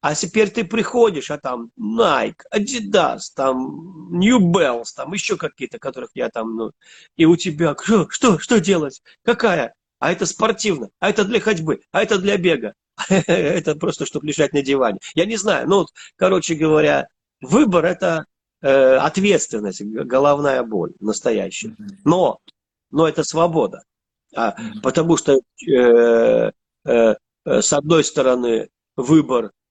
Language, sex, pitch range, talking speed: Russian, male, 130-195 Hz, 130 wpm